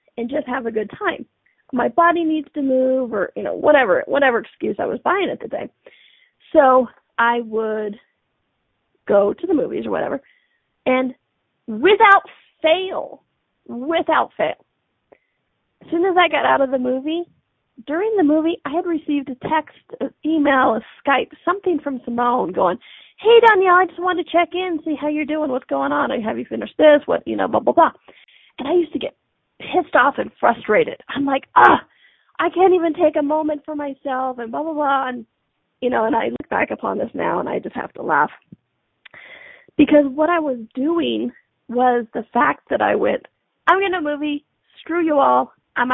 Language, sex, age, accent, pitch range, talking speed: English, female, 30-49, American, 255-340 Hz, 190 wpm